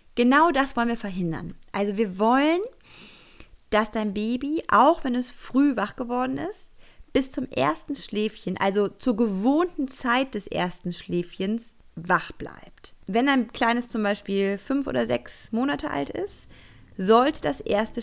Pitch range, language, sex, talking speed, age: 190-250 Hz, German, female, 150 wpm, 30-49